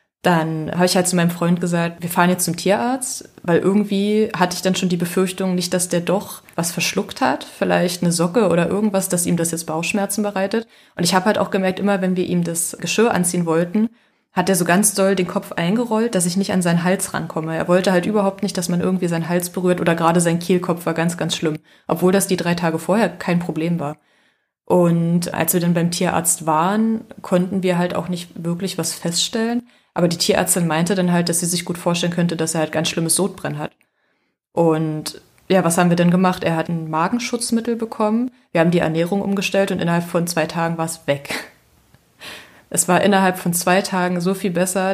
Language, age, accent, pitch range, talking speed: German, 20-39, German, 170-195 Hz, 220 wpm